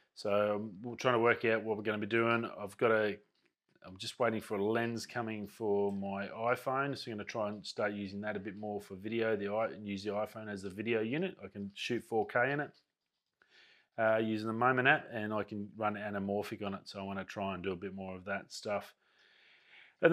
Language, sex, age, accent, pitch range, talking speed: English, male, 30-49, Australian, 100-115 Hz, 245 wpm